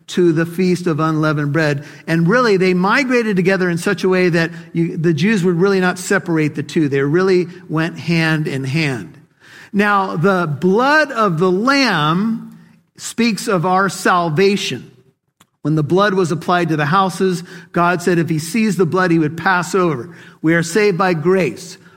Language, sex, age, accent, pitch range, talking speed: English, male, 50-69, American, 165-200 Hz, 180 wpm